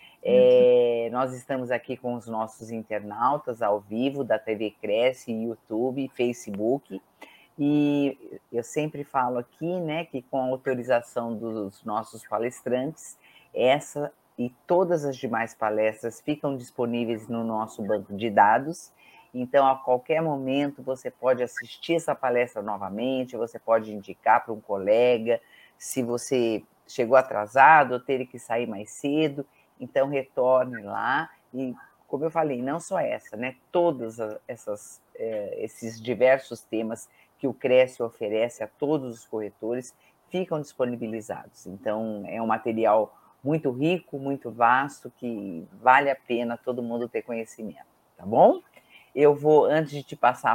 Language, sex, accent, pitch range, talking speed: Portuguese, female, Brazilian, 115-140 Hz, 140 wpm